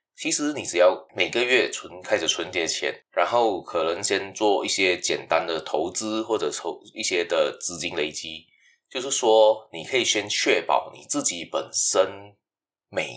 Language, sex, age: Chinese, male, 20-39